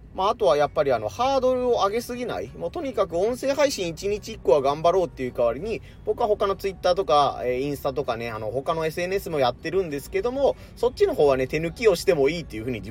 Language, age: Japanese, 30-49